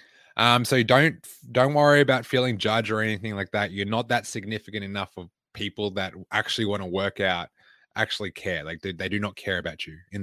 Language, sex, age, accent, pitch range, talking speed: English, male, 20-39, Australian, 100-120 Hz, 210 wpm